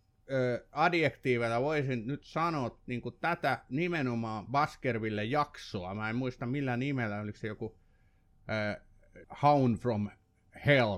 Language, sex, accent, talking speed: Finnish, male, native, 105 wpm